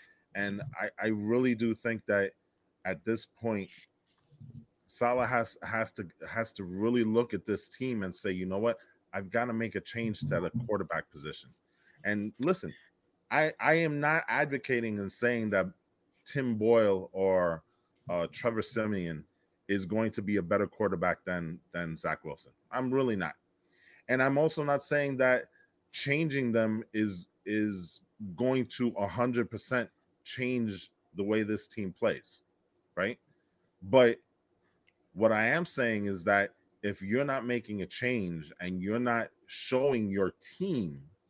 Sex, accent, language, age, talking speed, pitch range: male, American, English, 30-49, 155 wpm, 100-125 Hz